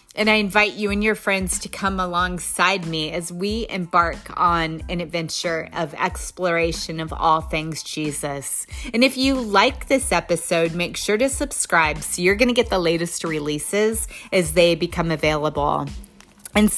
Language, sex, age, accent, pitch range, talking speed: English, female, 30-49, American, 165-205 Hz, 160 wpm